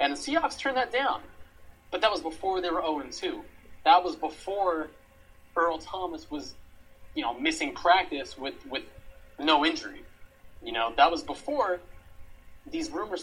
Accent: American